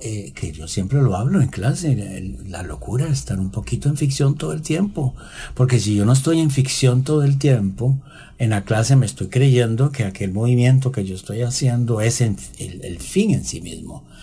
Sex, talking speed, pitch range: male, 215 wpm, 105-140 Hz